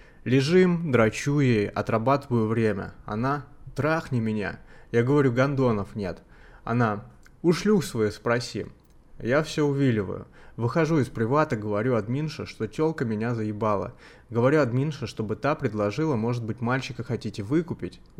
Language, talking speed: Russian, 125 wpm